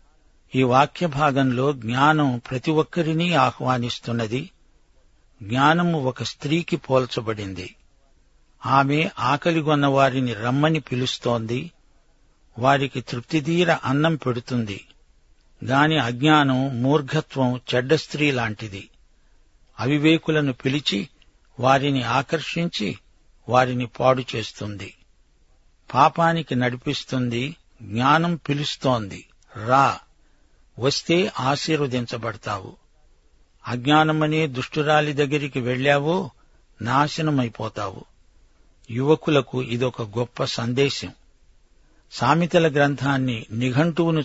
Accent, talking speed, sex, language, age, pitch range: native, 70 wpm, male, Telugu, 60-79, 120-150 Hz